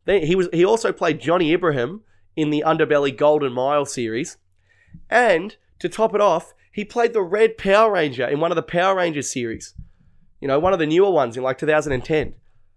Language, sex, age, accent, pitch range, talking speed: English, male, 20-39, Australian, 120-195 Hz, 195 wpm